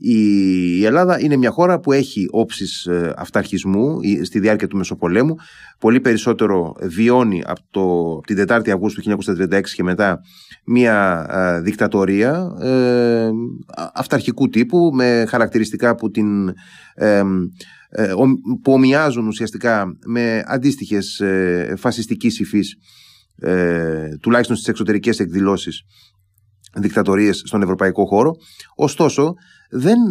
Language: Greek